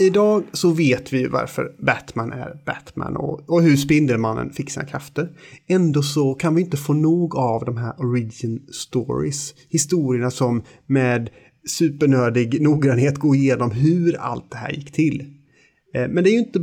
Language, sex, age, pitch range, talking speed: Swedish, male, 30-49, 125-155 Hz, 160 wpm